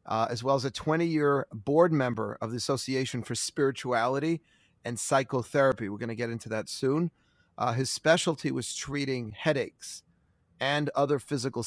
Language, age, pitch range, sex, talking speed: English, 30-49, 120-145 Hz, male, 160 wpm